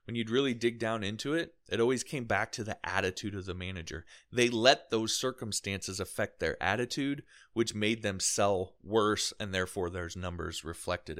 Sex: male